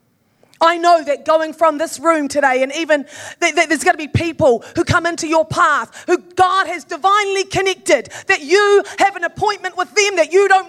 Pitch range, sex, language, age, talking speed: 235-380 Hz, female, English, 30-49, 210 wpm